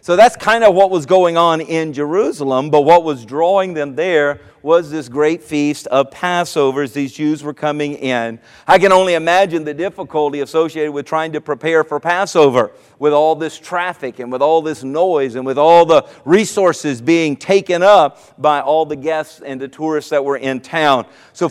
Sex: male